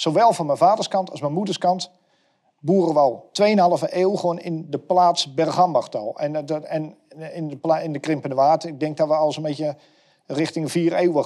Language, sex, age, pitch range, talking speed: Dutch, male, 50-69, 135-170 Hz, 205 wpm